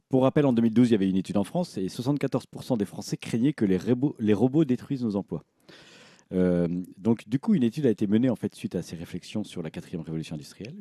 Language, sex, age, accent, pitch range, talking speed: French, male, 40-59, French, 90-130 Hz, 245 wpm